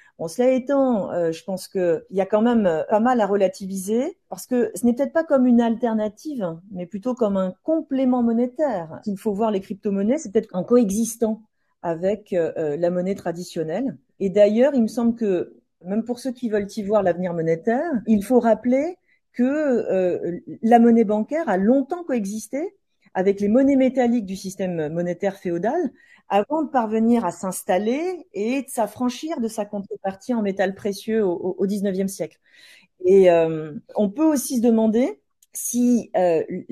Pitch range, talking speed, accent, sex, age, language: 190-250 Hz, 170 wpm, French, female, 40-59, French